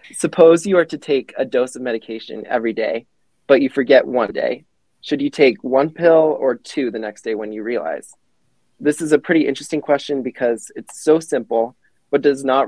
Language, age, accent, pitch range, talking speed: English, 20-39, American, 115-140 Hz, 200 wpm